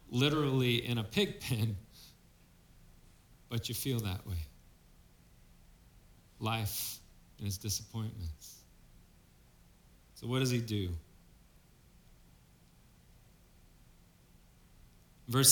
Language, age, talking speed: English, 40-59, 75 wpm